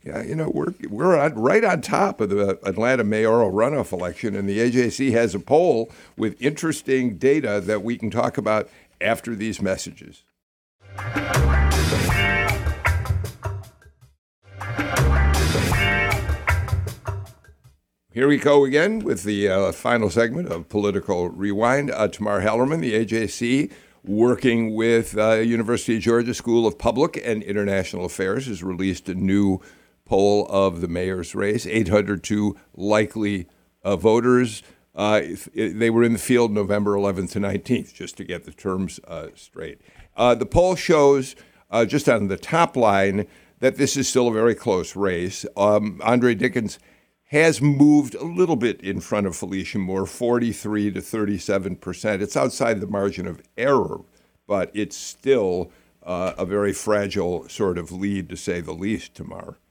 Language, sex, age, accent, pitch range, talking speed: English, male, 60-79, American, 95-120 Hz, 150 wpm